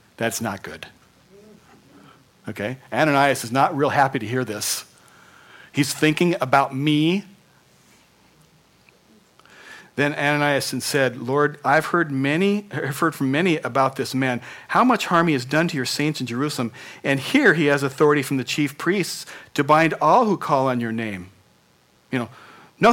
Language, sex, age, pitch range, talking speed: English, male, 40-59, 130-165 Hz, 160 wpm